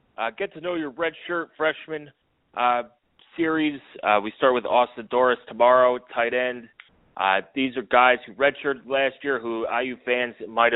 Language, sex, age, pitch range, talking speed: English, male, 30-49, 120-145 Hz, 165 wpm